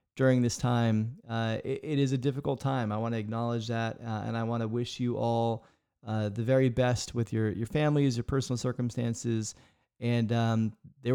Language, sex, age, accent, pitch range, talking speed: English, male, 30-49, American, 115-130 Hz, 200 wpm